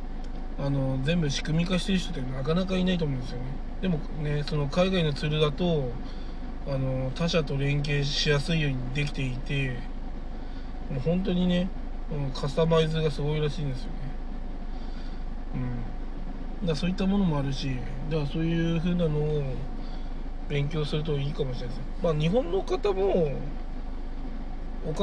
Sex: male